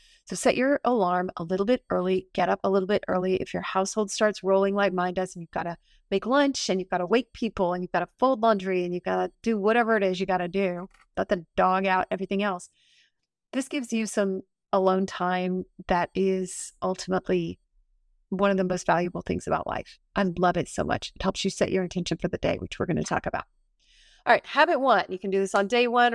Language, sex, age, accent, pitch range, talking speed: English, female, 30-49, American, 185-220 Hz, 245 wpm